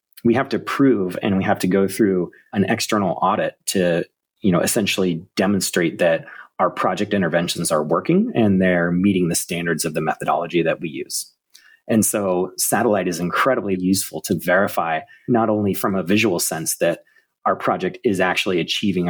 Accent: American